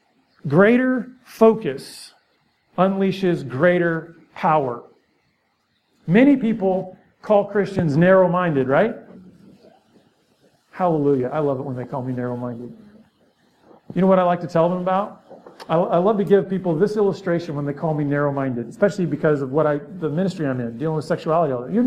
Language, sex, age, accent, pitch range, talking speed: English, male, 50-69, American, 165-215 Hz, 150 wpm